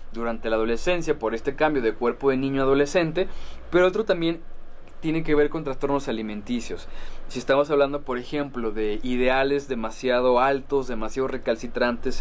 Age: 20-39